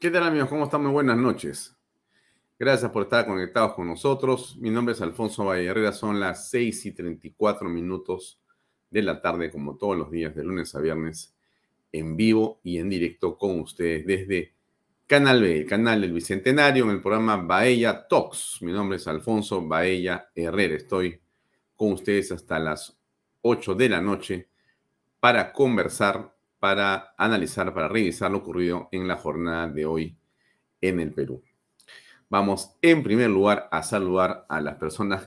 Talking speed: 165 wpm